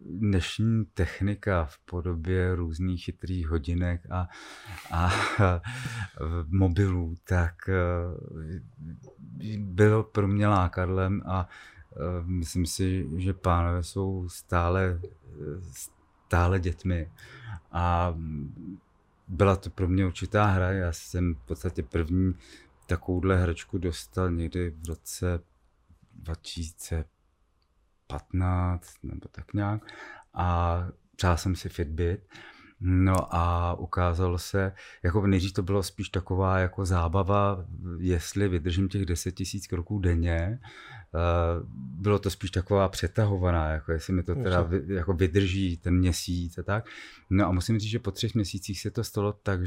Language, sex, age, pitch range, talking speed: Czech, male, 30-49, 85-95 Hz, 120 wpm